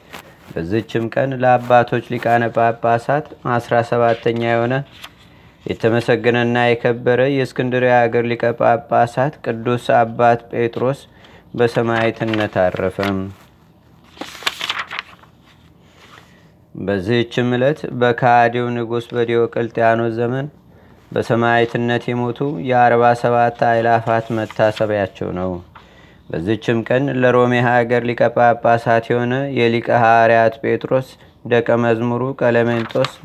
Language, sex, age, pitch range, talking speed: Amharic, male, 30-49, 115-120 Hz, 75 wpm